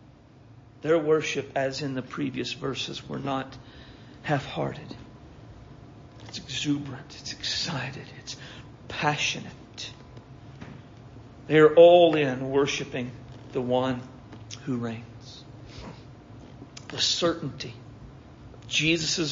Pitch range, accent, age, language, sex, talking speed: 125-145 Hz, American, 50-69, English, male, 85 wpm